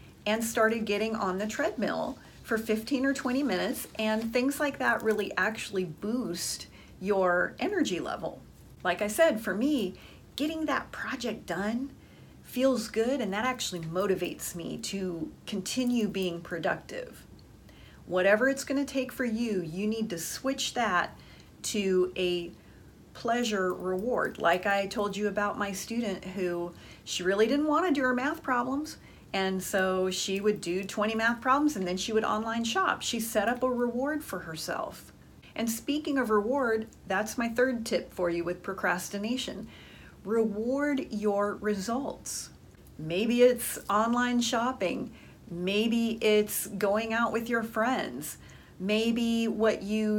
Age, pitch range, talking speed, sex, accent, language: 40-59, 190-240 Hz, 145 wpm, female, American, English